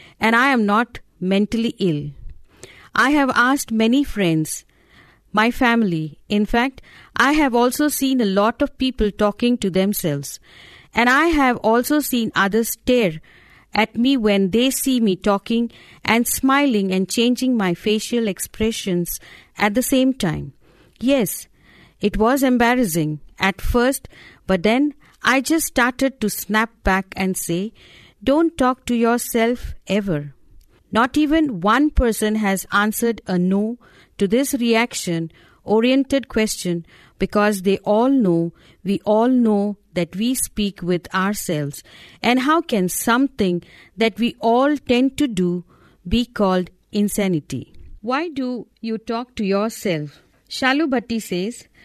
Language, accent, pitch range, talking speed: English, Indian, 195-250 Hz, 135 wpm